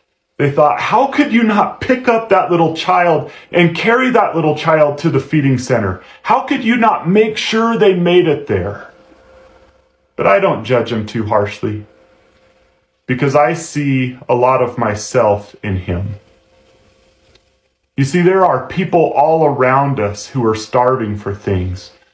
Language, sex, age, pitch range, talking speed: English, male, 30-49, 105-150 Hz, 160 wpm